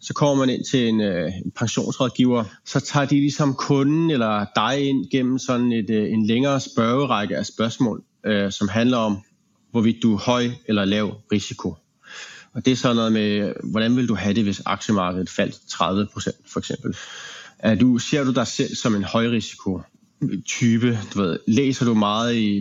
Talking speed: 185 wpm